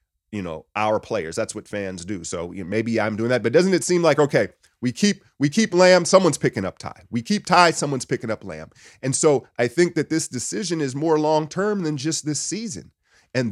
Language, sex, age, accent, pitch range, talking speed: English, male, 30-49, American, 95-150 Hz, 230 wpm